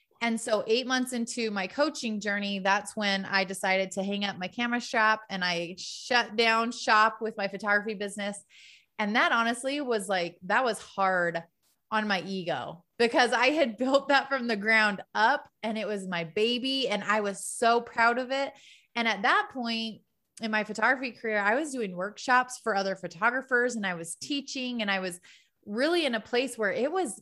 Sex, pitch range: female, 195-235 Hz